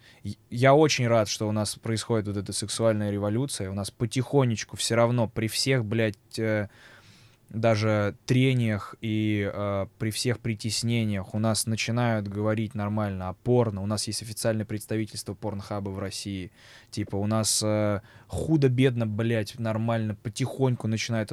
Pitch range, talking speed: 105-135 Hz, 145 wpm